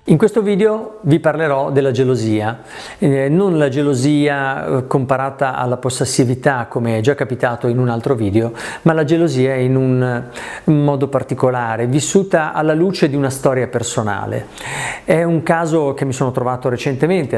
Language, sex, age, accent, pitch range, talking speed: Italian, male, 40-59, native, 120-150 Hz, 155 wpm